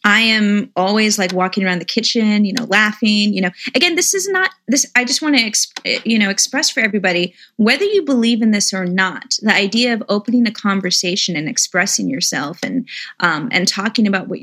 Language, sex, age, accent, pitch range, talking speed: English, female, 30-49, American, 195-250 Hz, 205 wpm